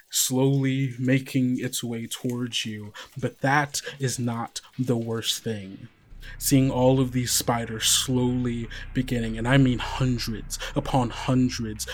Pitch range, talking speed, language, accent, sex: 105-125 Hz, 130 wpm, English, American, male